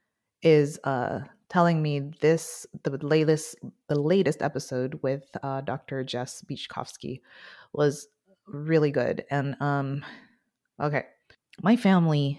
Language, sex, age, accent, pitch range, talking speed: English, female, 30-49, American, 135-165 Hz, 110 wpm